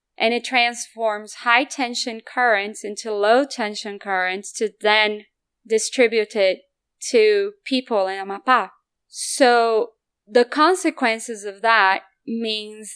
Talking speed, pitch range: 100 wpm, 210-265 Hz